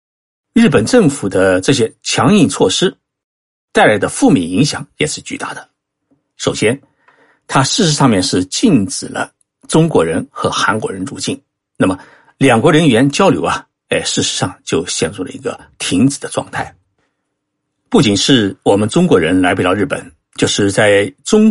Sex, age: male, 60-79